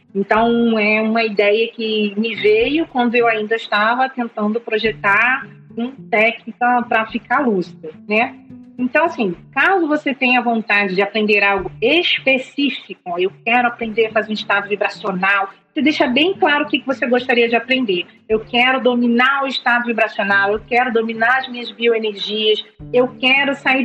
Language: Portuguese